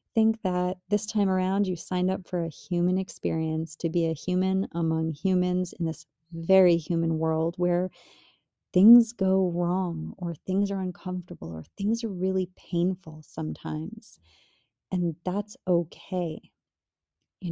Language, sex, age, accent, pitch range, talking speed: English, female, 30-49, American, 170-195 Hz, 140 wpm